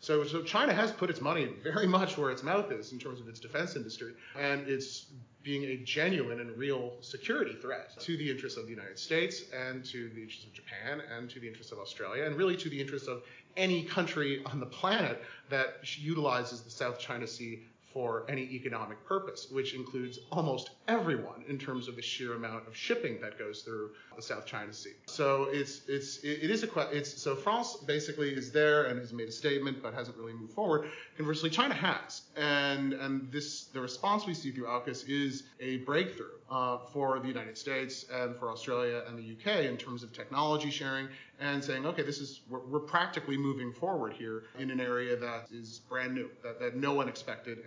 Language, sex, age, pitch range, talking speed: English, male, 30-49, 120-150 Hz, 210 wpm